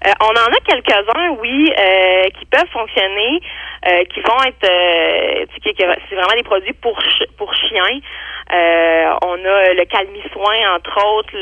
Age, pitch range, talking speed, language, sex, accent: 30-49, 170-235 Hz, 165 wpm, French, female, Canadian